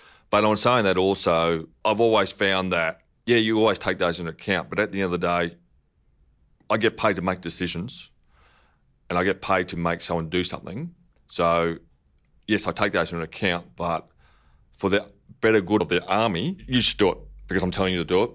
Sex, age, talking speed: male, 30-49, 210 wpm